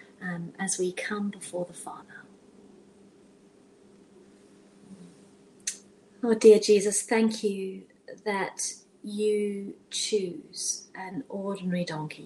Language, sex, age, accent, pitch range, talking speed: English, female, 30-49, British, 185-220 Hz, 90 wpm